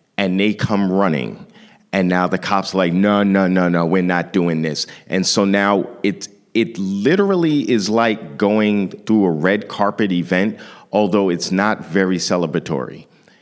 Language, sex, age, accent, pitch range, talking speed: English, male, 40-59, American, 85-105 Hz, 165 wpm